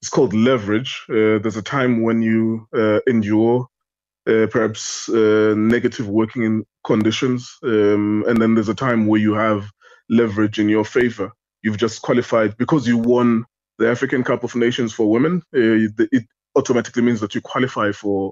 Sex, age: male, 20-39